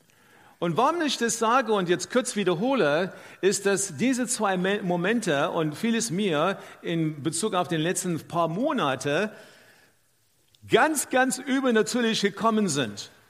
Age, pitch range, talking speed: 50-69, 175-230 Hz, 130 wpm